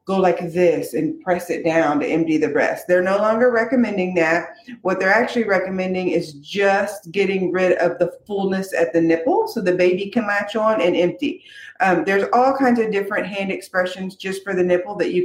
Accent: American